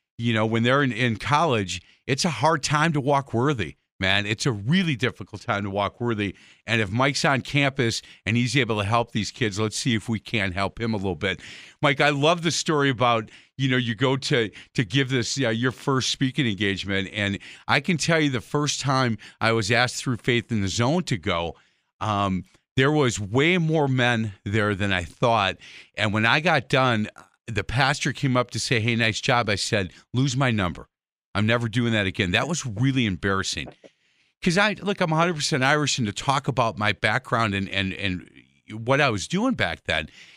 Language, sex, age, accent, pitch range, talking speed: English, male, 50-69, American, 105-140 Hz, 210 wpm